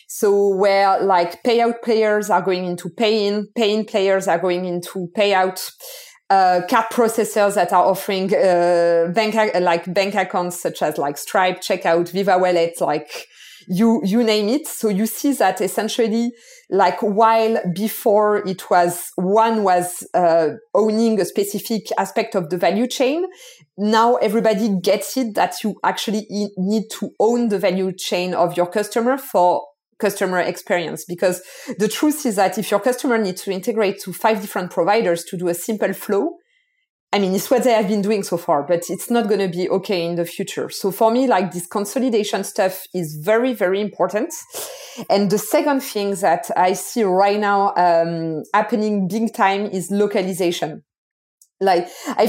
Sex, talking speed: female, 170 wpm